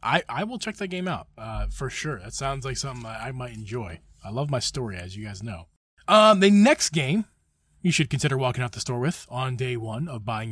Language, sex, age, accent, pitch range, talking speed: English, male, 20-39, American, 130-200 Hz, 245 wpm